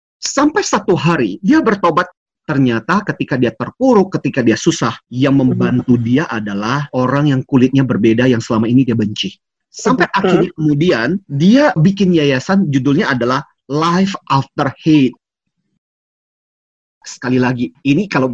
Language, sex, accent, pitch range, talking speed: Indonesian, male, native, 135-190 Hz, 130 wpm